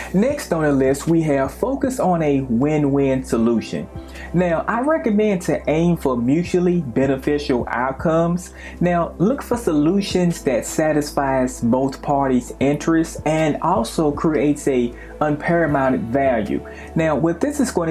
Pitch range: 135-175 Hz